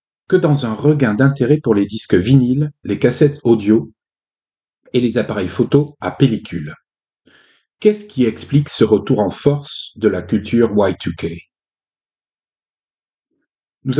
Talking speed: 130 wpm